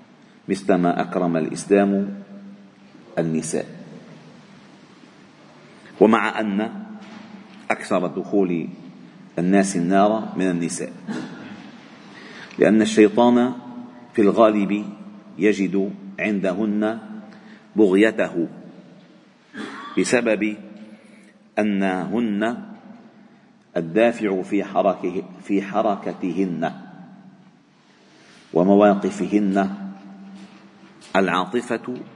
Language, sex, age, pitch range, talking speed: Arabic, male, 50-69, 100-125 Hz, 50 wpm